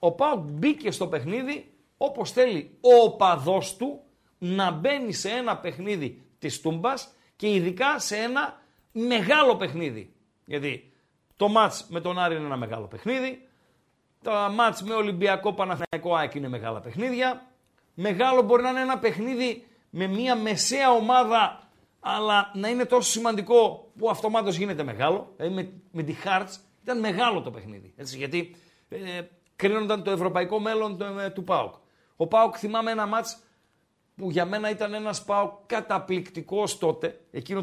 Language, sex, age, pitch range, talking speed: Greek, male, 50-69, 170-230 Hz, 150 wpm